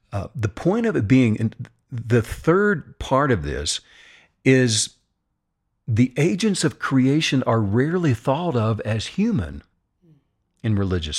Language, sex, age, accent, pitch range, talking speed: English, male, 50-69, American, 95-135 Hz, 130 wpm